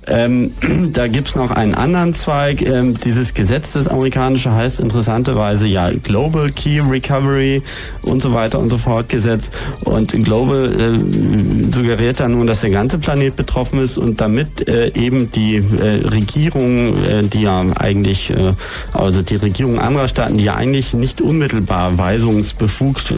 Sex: male